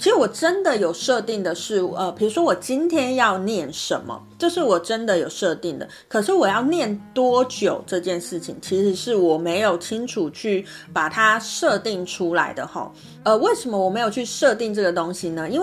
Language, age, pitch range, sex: Chinese, 30-49, 175-245 Hz, female